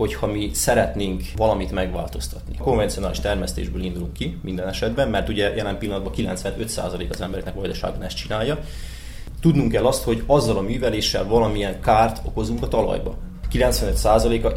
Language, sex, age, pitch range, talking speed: Hungarian, male, 20-39, 95-120 Hz, 140 wpm